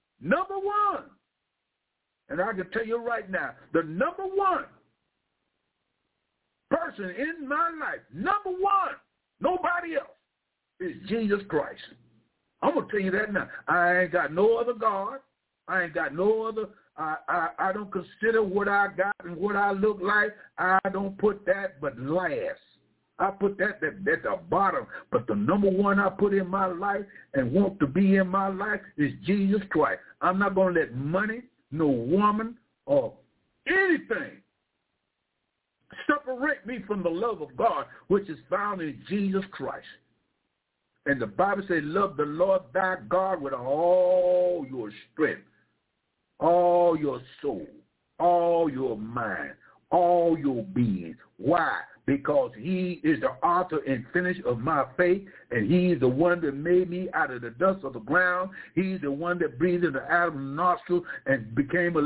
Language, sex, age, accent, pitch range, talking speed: English, male, 60-79, American, 165-205 Hz, 160 wpm